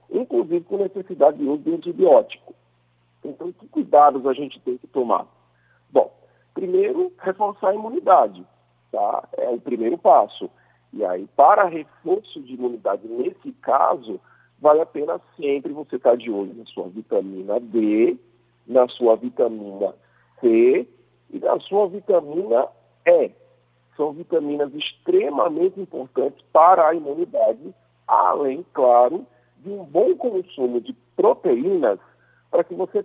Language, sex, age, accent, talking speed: Portuguese, male, 50-69, Brazilian, 130 wpm